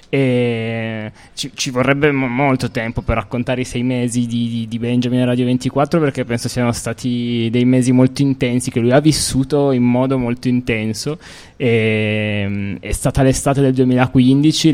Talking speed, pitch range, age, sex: 165 wpm, 110-130 Hz, 20-39, male